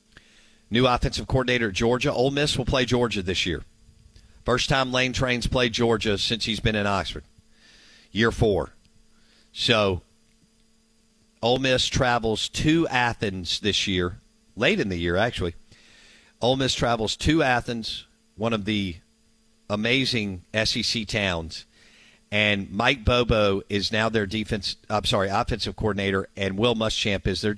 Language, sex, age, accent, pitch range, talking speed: English, male, 50-69, American, 100-120 Hz, 140 wpm